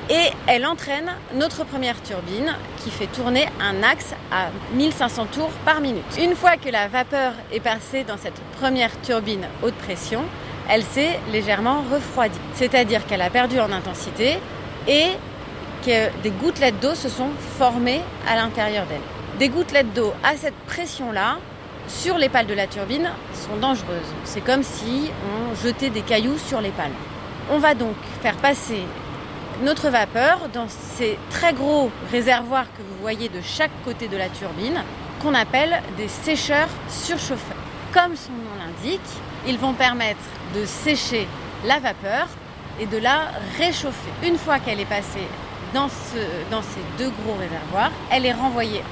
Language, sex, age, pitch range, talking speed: French, female, 30-49, 225-285 Hz, 160 wpm